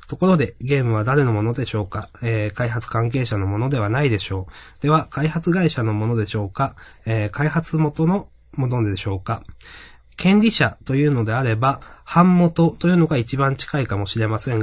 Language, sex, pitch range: Japanese, male, 110-150 Hz